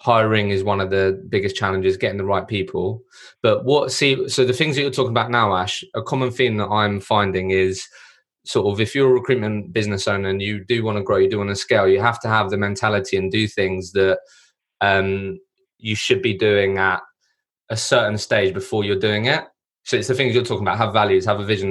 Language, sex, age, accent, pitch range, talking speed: English, male, 20-39, British, 100-125 Hz, 230 wpm